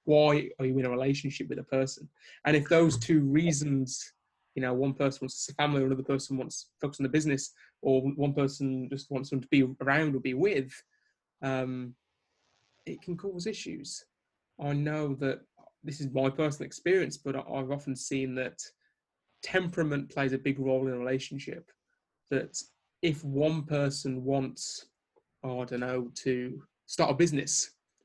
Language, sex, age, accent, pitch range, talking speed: English, male, 20-39, British, 130-145 Hz, 170 wpm